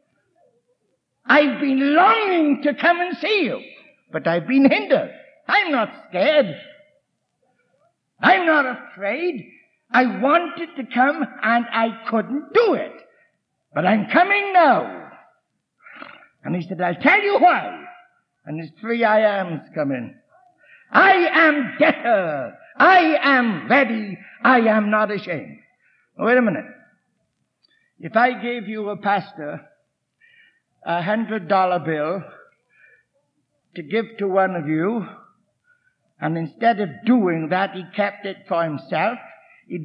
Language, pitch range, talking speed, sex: English, 195-295 Hz, 125 wpm, male